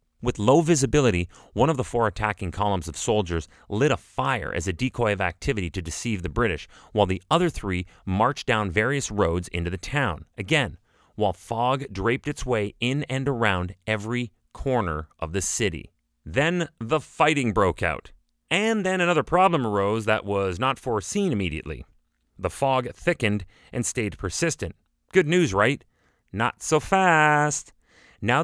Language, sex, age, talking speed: English, male, 30-49, 160 wpm